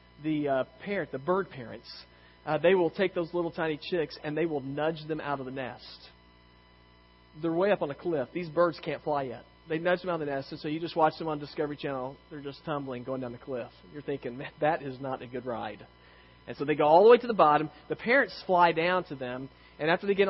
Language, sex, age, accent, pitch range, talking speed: English, male, 40-59, American, 130-180 Hz, 255 wpm